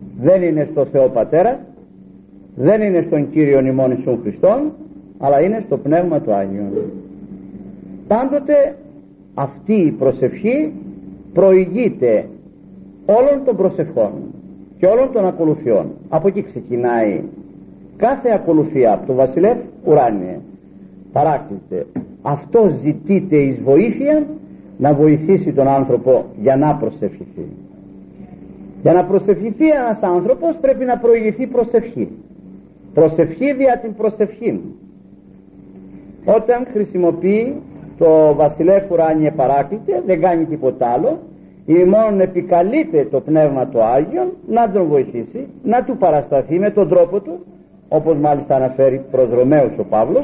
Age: 50-69